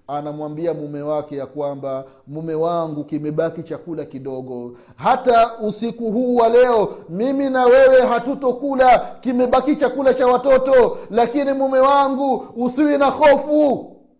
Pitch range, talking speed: 190-275 Hz, 115 wpm